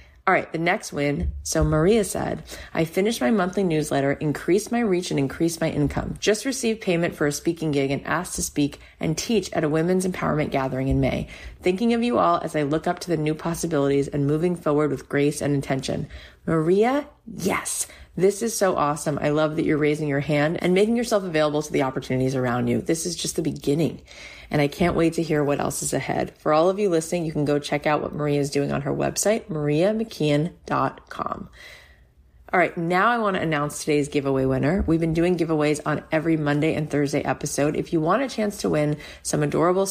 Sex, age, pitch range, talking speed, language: female, 30-49, 145-180 Hz, 215 wpm, English